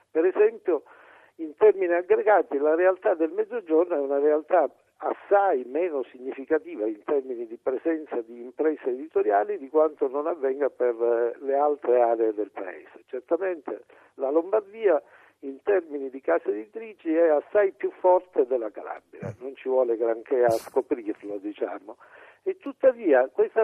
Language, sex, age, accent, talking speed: Italian, male, 60-79, native, 140 wpm